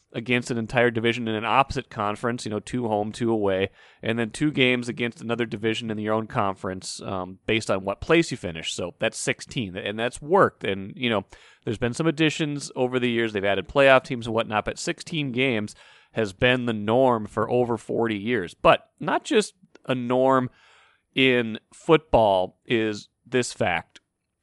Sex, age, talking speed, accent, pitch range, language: male, 30-49, 185 wpm, American, 110-130 Hz, English